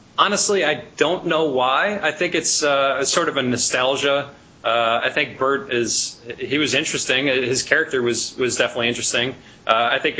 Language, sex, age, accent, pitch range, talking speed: English, male, 30-49, American, 115-140 Hz, 175 wpm